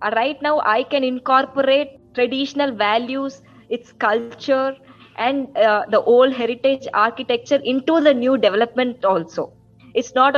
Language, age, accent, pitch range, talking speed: Hindi, 20-39, native, 215-270 Hz, 125 wpm